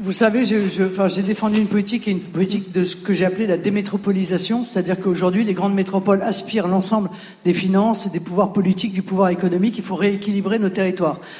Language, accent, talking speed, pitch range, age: French, French, 205 wpm, 185-225 Hz, 50-69